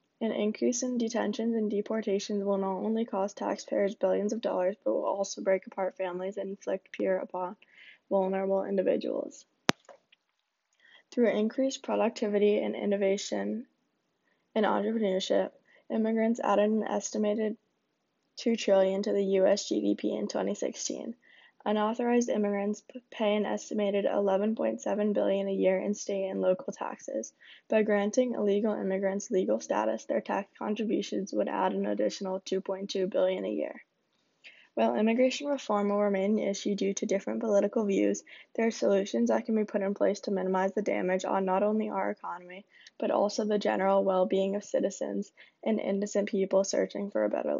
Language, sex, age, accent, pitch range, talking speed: English, female, 10-29, American, 190-215 Hz, 155 wpm